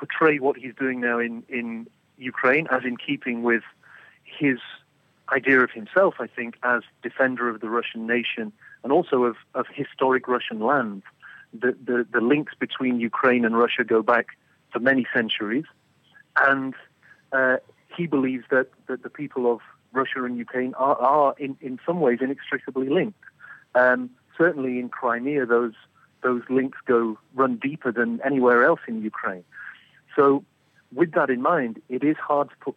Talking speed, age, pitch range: 165 wpm, 40-59, 120-135 Hz